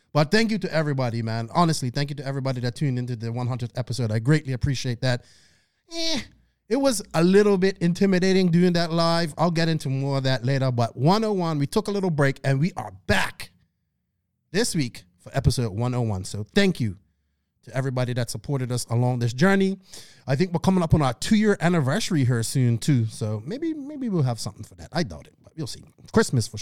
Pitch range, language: 120-165 Hz, English